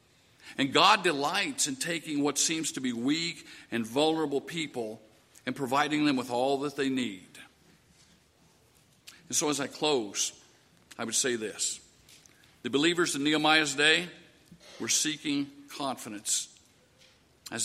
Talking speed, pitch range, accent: 135 wpm, 125-180 Hz, American